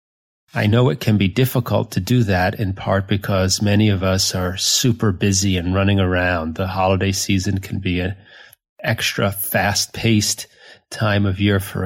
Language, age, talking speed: English, 30-49, 165 wpm